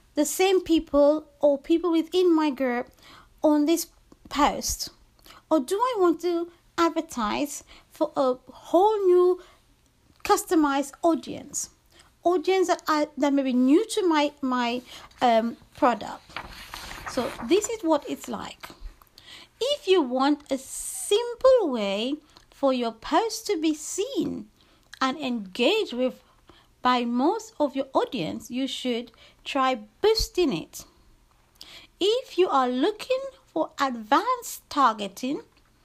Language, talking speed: English, 120 wpm